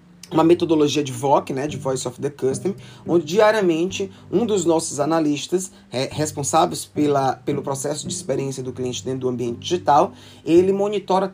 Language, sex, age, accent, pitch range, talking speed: Portuguese, male, 20-39, Brazilian, 135-180 Hz, 155 wpm